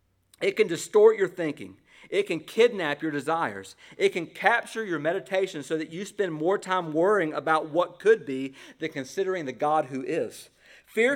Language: English